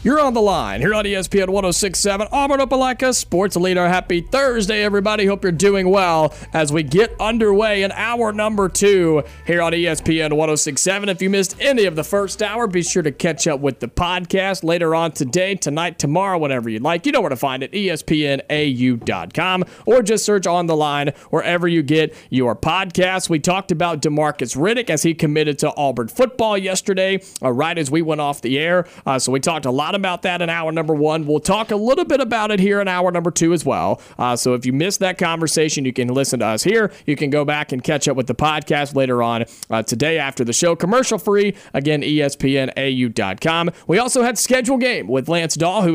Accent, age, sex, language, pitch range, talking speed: American, 40-59, male, English, 150-200 Hz, 210 wpm